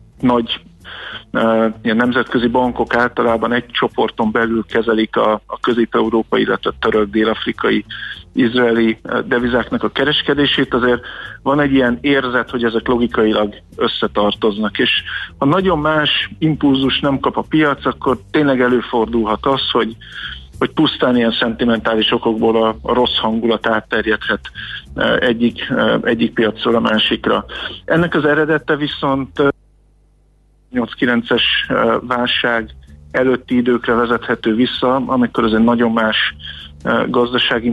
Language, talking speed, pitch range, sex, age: Hungarian, 115 wpm, 110-125 Hz, male, 50-69